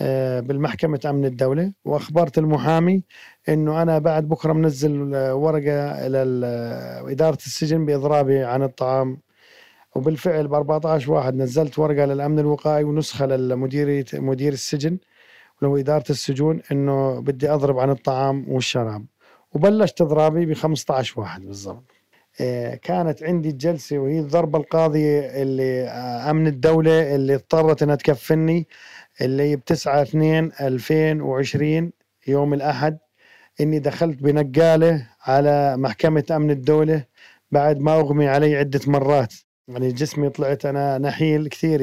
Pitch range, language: 135-155 Hz, Arabic